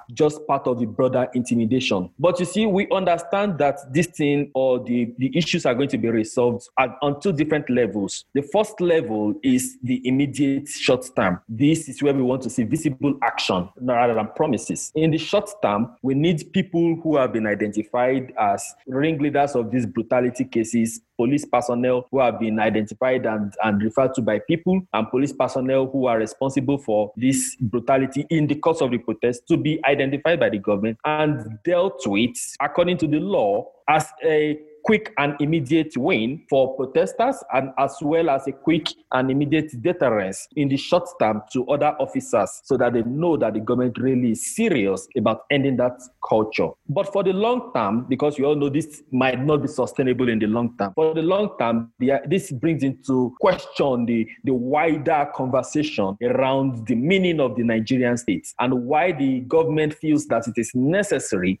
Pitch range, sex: 120-155 Hz, male